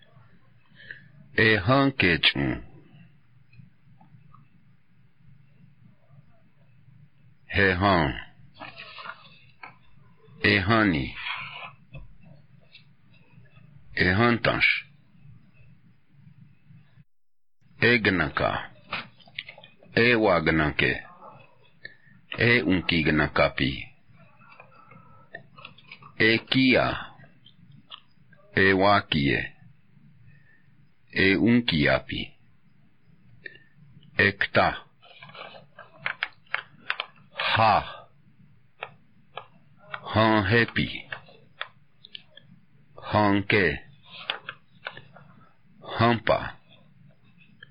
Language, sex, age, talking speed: English, male, 60-79, 40 wpm